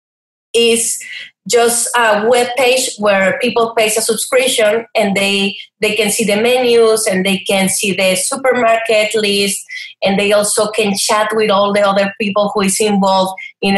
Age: 30-49